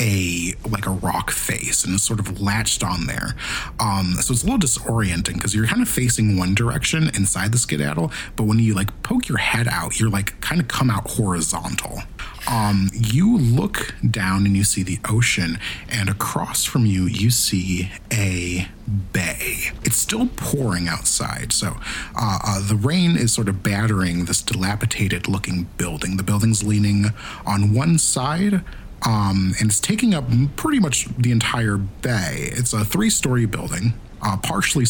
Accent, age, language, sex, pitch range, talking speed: American, 30-49, English, male, 100-125 Hz, 170 wpm